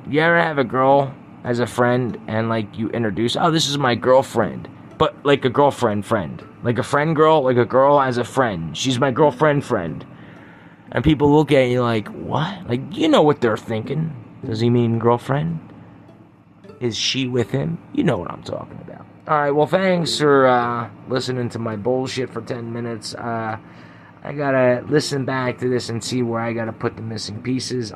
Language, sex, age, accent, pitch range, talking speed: English, male, 30-49, American, 110-140 Hz, 200 wpm